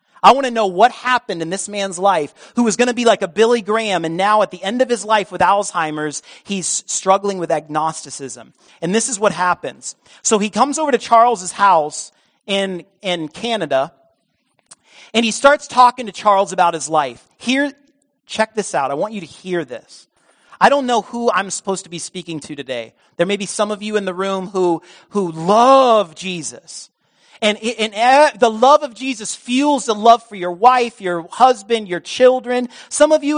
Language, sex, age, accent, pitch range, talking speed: English, male, 40-59, American, 170-235 Hz, 200 wpm